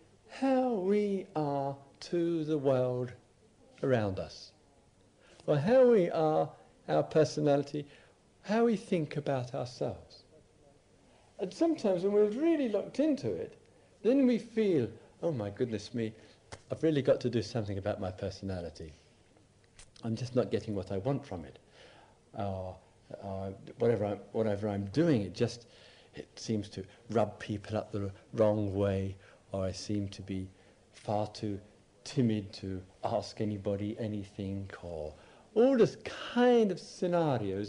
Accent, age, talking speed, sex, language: British, 50-69, 140 wpm, male, English